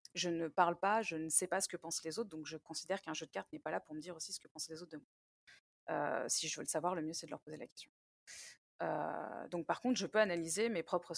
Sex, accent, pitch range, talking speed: female, French, 160-215 Hz, 305 wpm